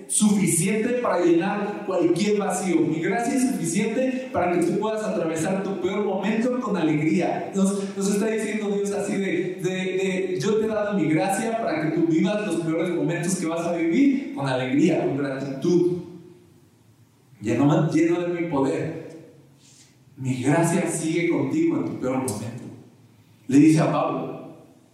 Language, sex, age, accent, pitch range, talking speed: Spanish, male, 40-59, Mexican, 140-185 Hz, 160 wpm